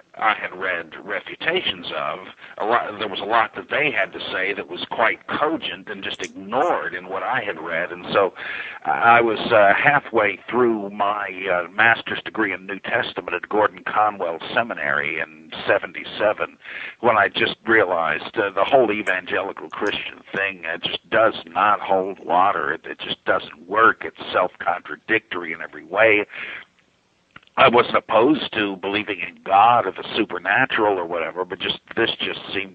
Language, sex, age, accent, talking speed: English, male, 50-69, American, 160 wpm